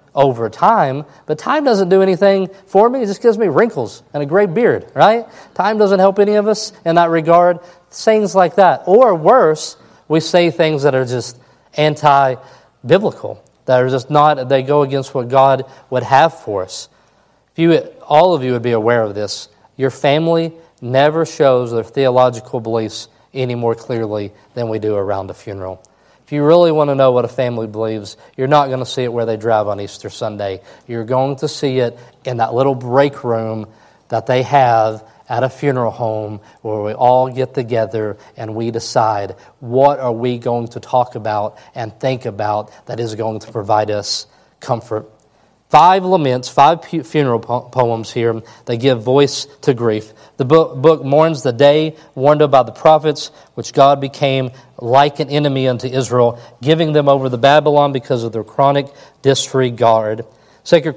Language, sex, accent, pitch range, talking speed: English, male, American, 115-155 Hz, 180 wpm